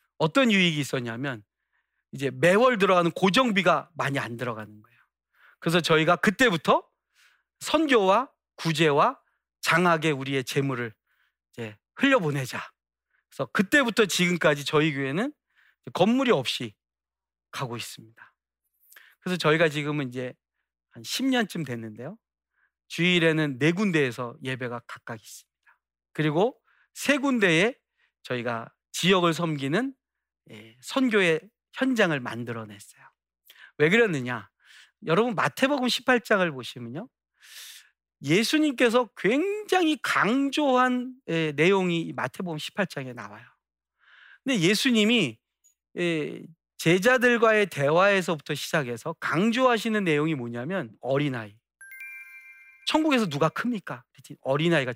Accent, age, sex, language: native, 40-59, male, Korean